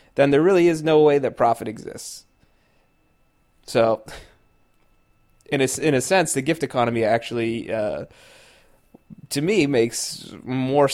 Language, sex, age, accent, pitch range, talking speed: English, male, 20-39, American, 110-135 Hz, 130 wpm